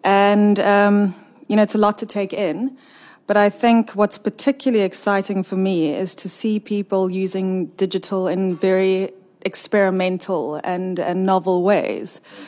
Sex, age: female, 20-39